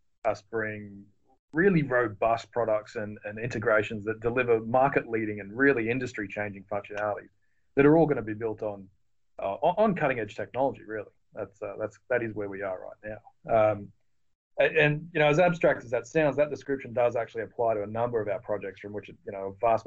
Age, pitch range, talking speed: 30-49, 100-120 Hz, 200 wpm